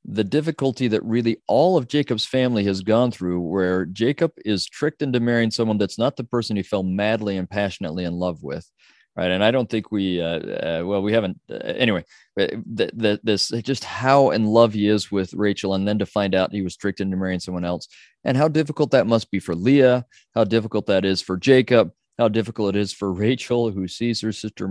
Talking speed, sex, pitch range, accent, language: 215 wpm, male, 95-115 Hz, American, English